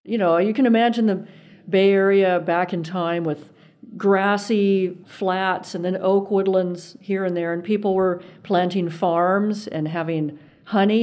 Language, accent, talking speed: English, American, 160 wpm